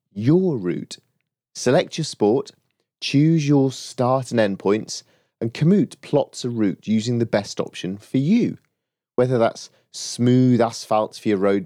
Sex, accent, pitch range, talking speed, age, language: male, British, 105-135 Hz, 150 wpm, 30-49, English